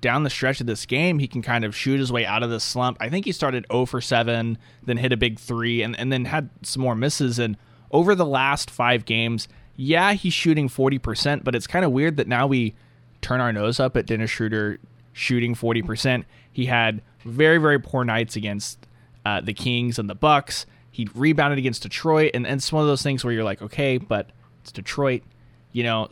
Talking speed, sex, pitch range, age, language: 220 wpm, male, 115-140 Hz, 20-39, English